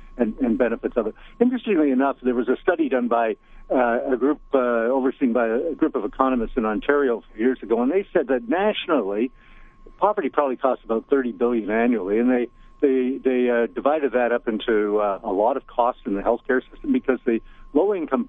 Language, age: English, 60-79